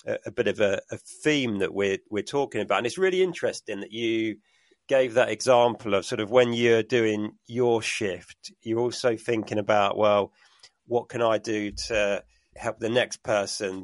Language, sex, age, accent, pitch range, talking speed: English, male, 40-59, British, 110-145 Hz, 180 wpm